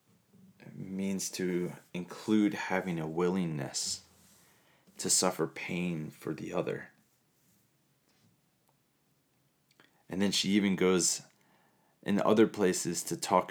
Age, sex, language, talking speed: 30-49, male, English, 100 wpm